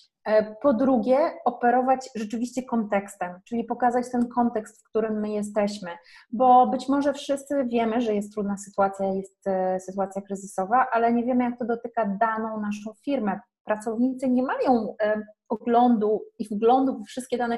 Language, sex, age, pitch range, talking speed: Polish, female, 20-39, 195-245 Hz, 145 wpm